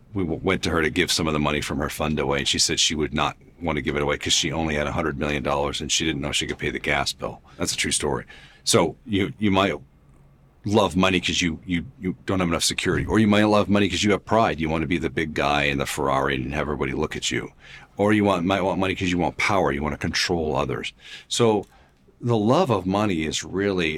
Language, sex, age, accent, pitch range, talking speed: English, male, 50-69, American, 70-90 Hz, 265 wpm